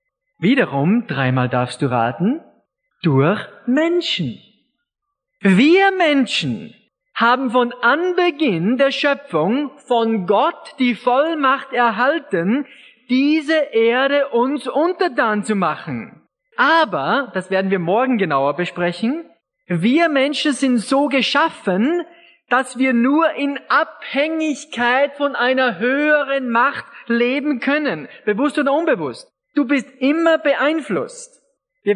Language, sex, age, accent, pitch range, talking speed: German, male, 40-59, German, 210-290 Hz, 105 wpm